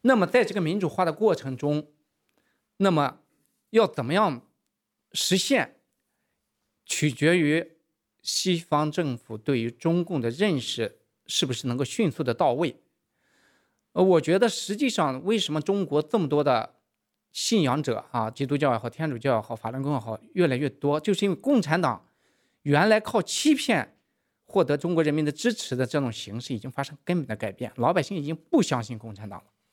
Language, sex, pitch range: English, male, 135-205 Hz